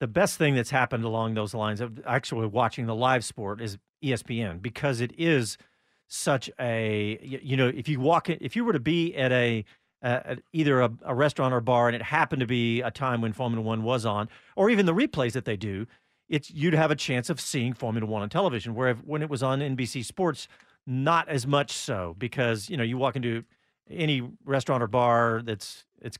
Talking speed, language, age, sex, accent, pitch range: 215 wpm, English, 40-59, male, American, 115-150 Hz